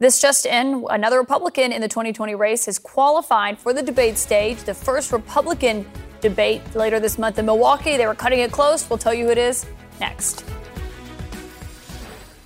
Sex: female